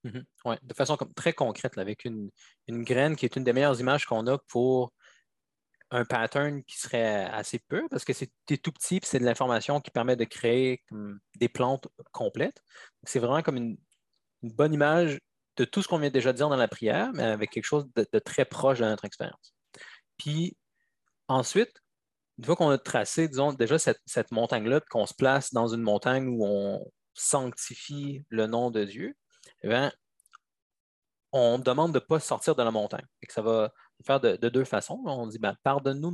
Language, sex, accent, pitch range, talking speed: French, male, Canadian, 115-145 Hz, 200 wpm